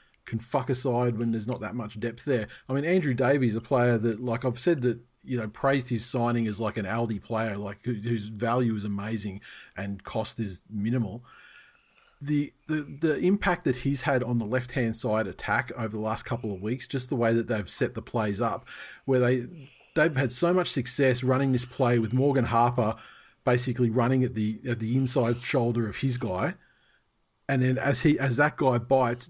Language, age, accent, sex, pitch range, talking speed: English, 40-59, Australian, male, 115-130 Hz, 205 wpm